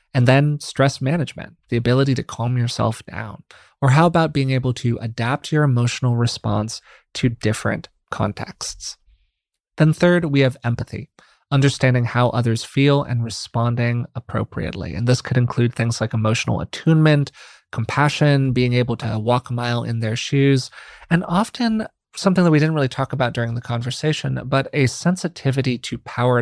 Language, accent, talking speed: English, American, 160 wpm